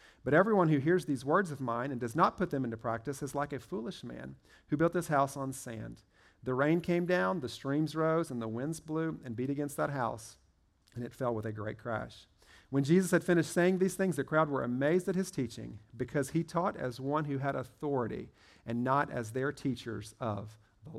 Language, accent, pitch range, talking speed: English, American, 125-170 Hz, 225 wpm